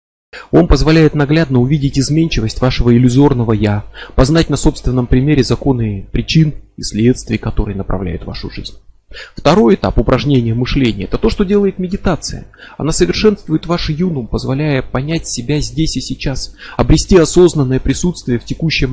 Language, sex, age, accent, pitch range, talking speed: Russian, male, 30-49, native, 115-150 Hz, 140 wpm